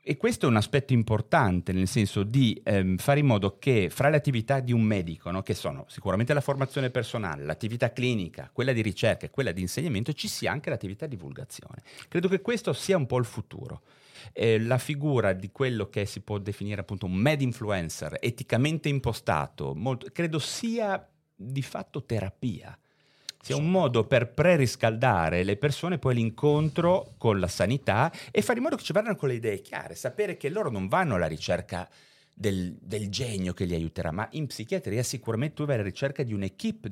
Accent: native